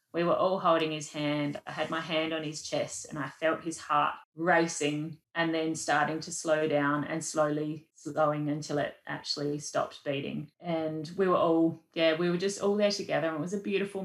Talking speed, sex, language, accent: 210 wpm, female, English, Australian